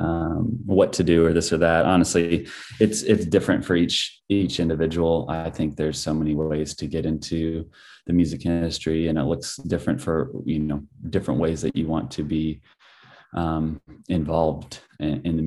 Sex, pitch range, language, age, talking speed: male, 75-85 Hz, English, 30-49, 180 wpm